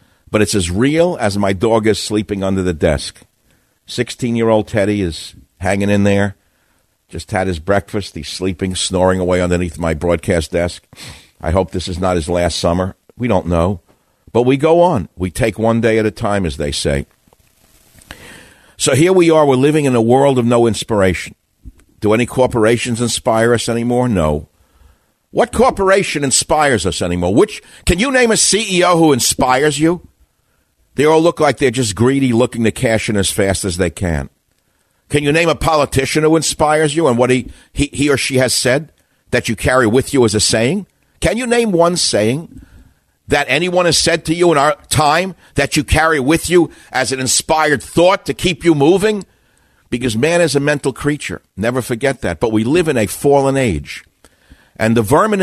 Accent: American